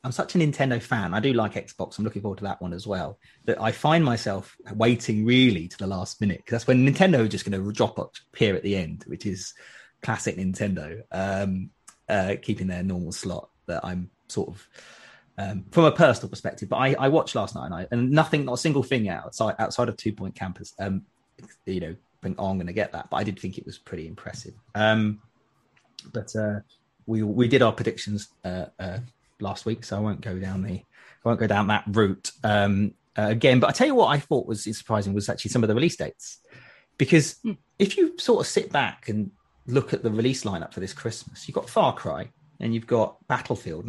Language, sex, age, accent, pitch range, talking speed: English, male, 30-49, British, 95-120 Hz, 225 wpm